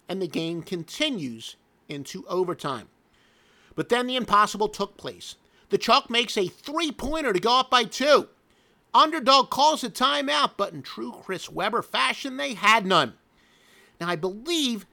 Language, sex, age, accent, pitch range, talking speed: English, male, 50-69, American, 170-250 Hz, 155 wpm